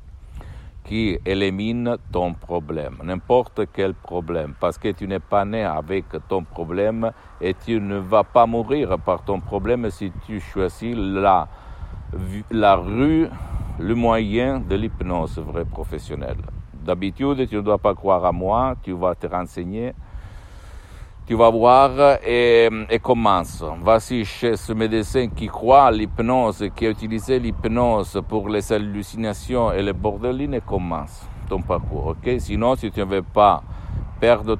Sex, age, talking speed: male, 60-79, 145 wpm